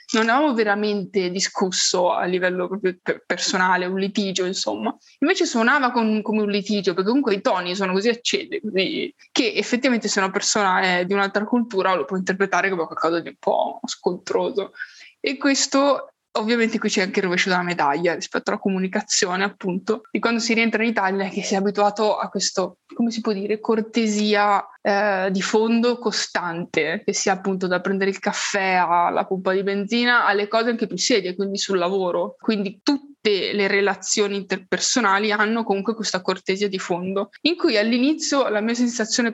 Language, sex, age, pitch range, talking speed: Italian, female, 20-39, 190-230 Hz, 170 wpm